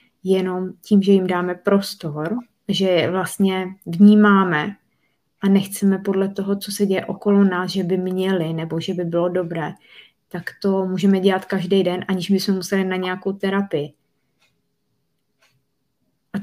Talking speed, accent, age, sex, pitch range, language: 145 wpm, native, 20-39, female, 175-195 Hz, Czech